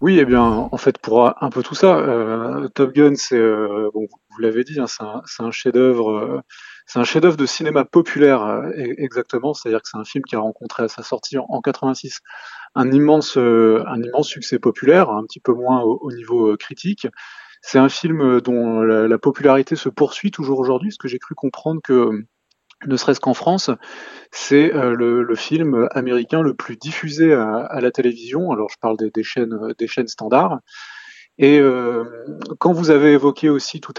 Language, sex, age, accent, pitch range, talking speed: French, male, 30-49, French, 115-150 Hz, 200 wpm